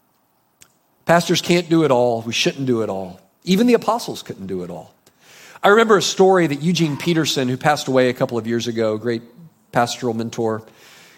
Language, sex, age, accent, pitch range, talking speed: English, male, 40-59, American, 135-185 Hz, 195 wpm